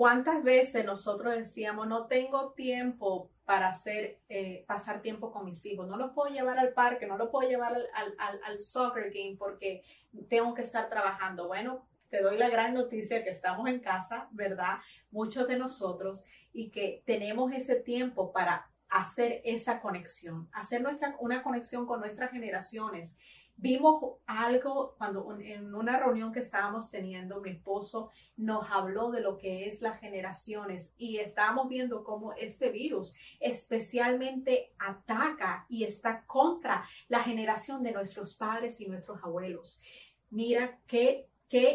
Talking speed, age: 150 wpm, 30-49